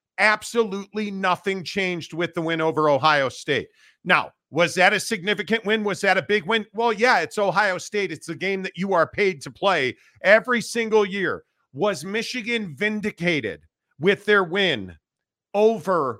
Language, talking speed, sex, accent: English, 165 wpm, male, American